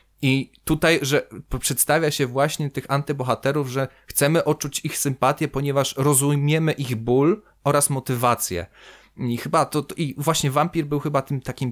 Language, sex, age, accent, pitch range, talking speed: Polish, male, 30-49, native, 125-155 Hz, 155 wpm